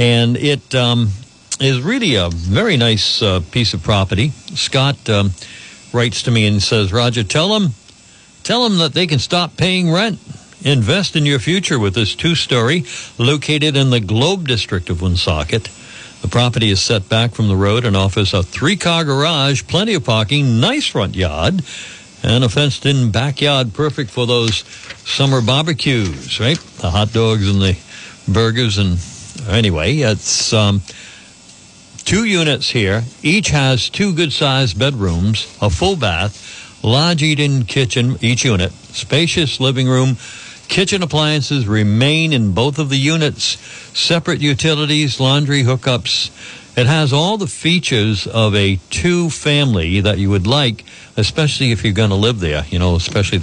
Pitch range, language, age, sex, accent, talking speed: 105-145 Hz, English, 60-79, male, American, 150 wpm